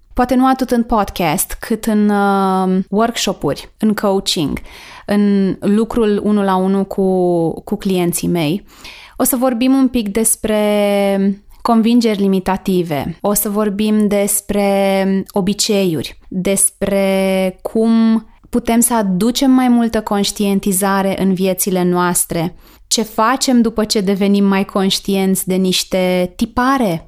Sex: female